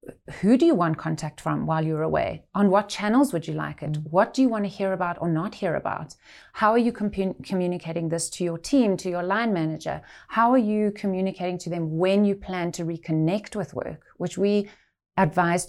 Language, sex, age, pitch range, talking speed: English, female, 30-49, 165-205 Hz, 210 wpm